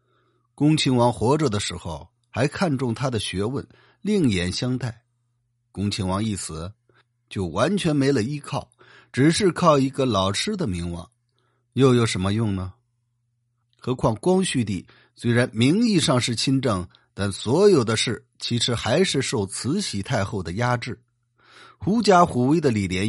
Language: Chinese